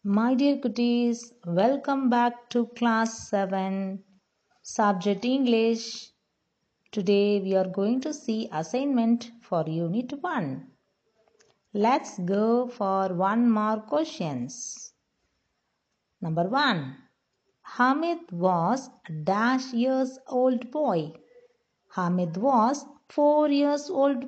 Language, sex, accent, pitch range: Tamil, female, native, 200-265 Hz